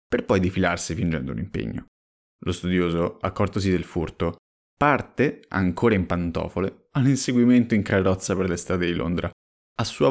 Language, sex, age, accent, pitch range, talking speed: Italian, male, 20-39, native, 85-110 Hz, 150 wpm